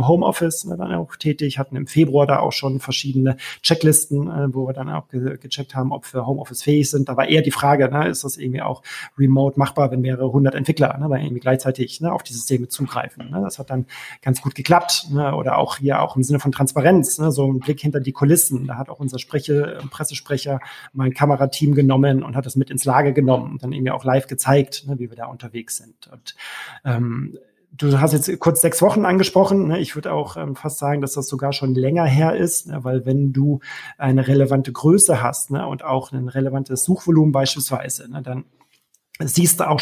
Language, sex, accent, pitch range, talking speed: German, male, German, 130-145 Hz, 210 wpm